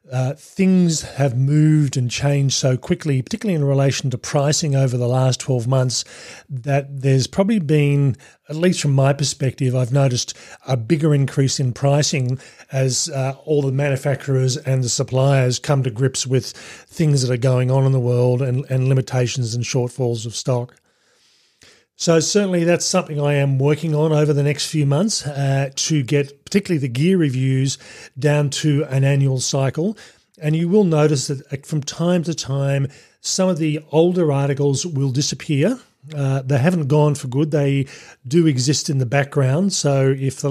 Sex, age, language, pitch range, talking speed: male, 40-59, English, 130-150 Hz, 175 wpm